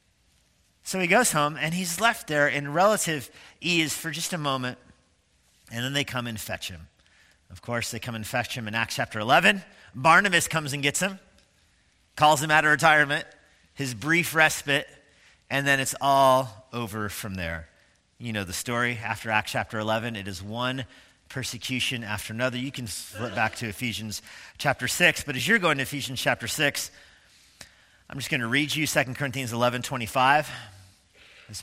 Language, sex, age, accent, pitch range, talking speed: English, male, 40-59, American, 105-145 Hz, 175 wpm